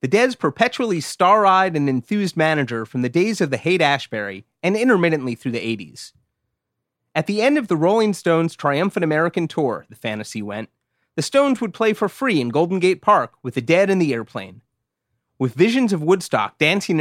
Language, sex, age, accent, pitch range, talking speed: English, male, 30-49, American, 120-190 Hz, 185 wpm